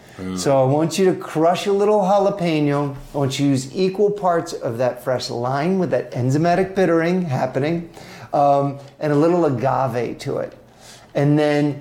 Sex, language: male, English